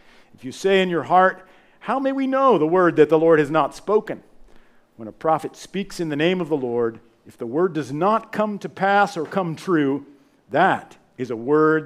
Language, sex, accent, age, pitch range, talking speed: English, male, American, 50-69, 130-195 Hz, 220 wpm